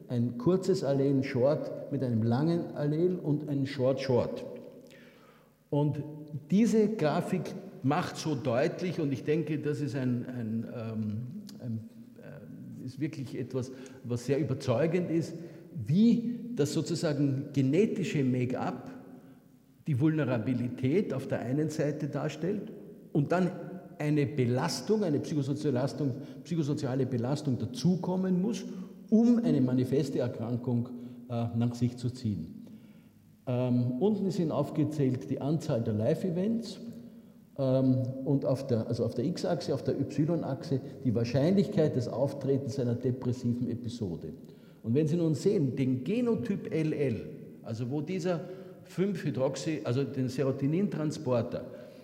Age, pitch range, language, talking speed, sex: 50-69, 130-175 Hz, German, 120 wpm, male